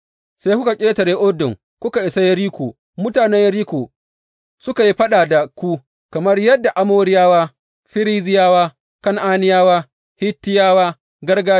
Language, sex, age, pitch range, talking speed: English, male, 30-49, 150-200 Hz, 120 wpm